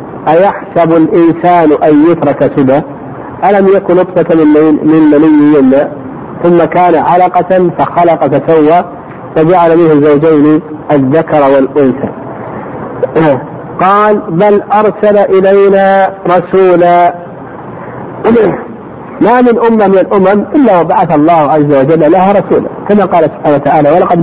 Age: 50-69